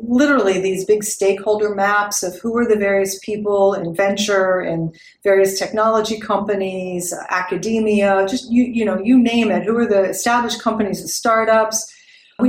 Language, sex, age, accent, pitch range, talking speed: English, female, 50-69, American, 190-235 Hz, 160 wpm